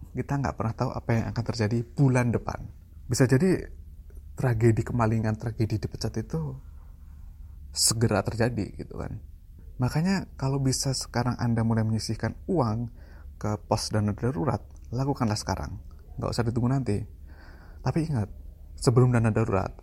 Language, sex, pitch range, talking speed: Indonesian, male, 80-130 Hz, 135 wpm